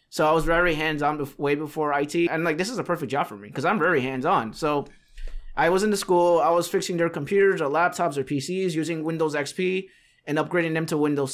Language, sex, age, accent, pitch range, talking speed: English, male, 20-39, American, 145-170 Hz, 235 wpm